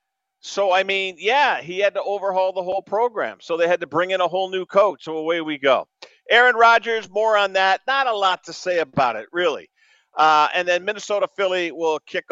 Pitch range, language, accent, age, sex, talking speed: 150-210 Hz, English, American, 50-69, male, 220 wpm